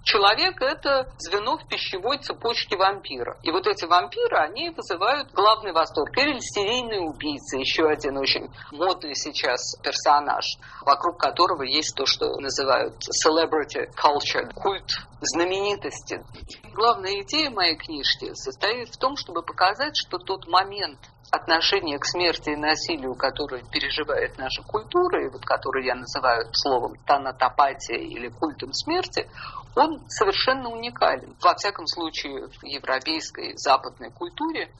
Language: Russian